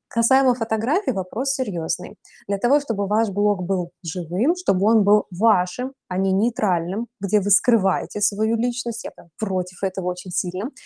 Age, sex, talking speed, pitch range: 20-39, female, 155 wpm, 190-240 Hz